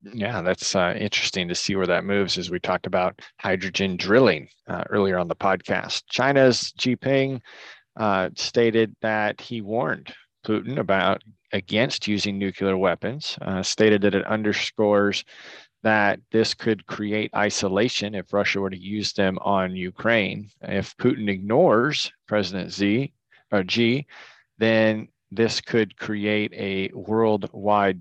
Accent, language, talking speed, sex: American, English, 140 wpm, male